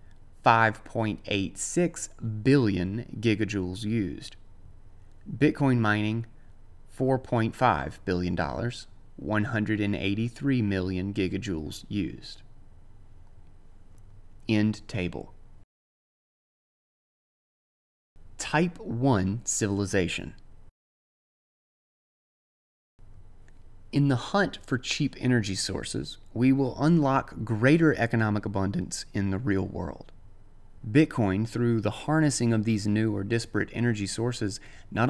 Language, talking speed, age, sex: English, 80 wpm, 30-49, male